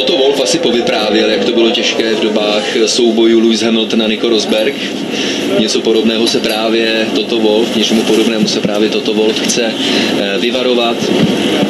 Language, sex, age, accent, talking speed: Czech, male, 30-49, native, 145 wpm